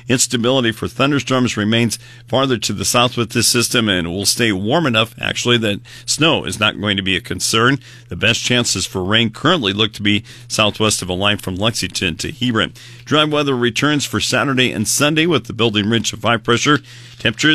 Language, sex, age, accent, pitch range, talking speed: English, male, 50-69, American, 105-125 Hz, 200 wpm